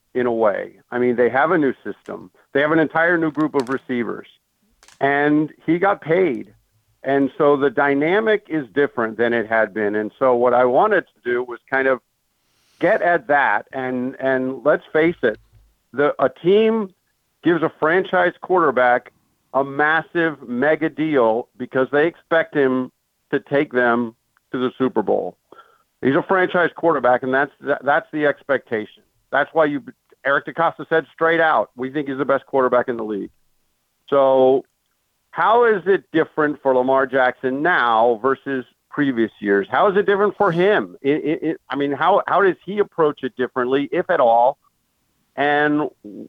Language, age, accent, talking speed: English, 50-69, American, 170 wpm